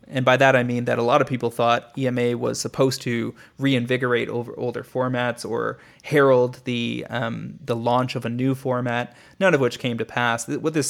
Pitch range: 120-130 Hz